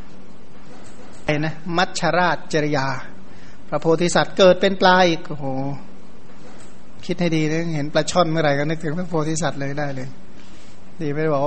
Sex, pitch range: male, 145-170 Hz